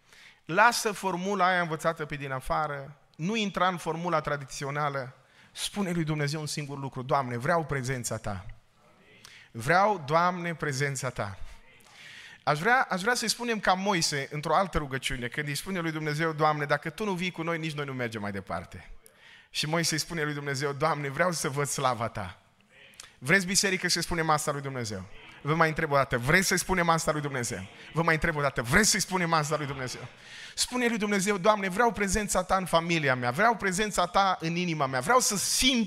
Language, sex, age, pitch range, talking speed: Romanian, male, 30-49, 150-205 Hz, 190 wpm